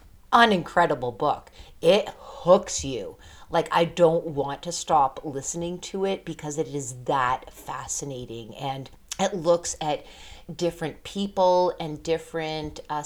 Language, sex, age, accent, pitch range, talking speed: English, female, 40-59, American, 145-170 Hz, 135 wpm